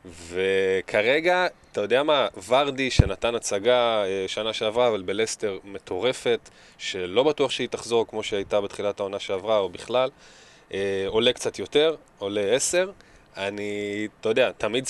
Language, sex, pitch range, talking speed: Hebrew, male, 105-130 Hz, 135 wpm